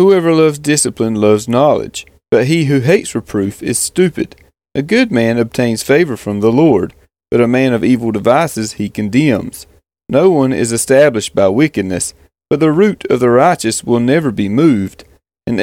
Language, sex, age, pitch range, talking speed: English, male, 30-49, 110-150 Hz, 175 wpm